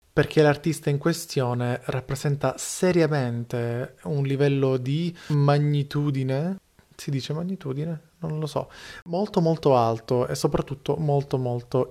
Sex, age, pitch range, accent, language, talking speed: male, 30-49, 120-145 Hz, native, Italian, 115 wpm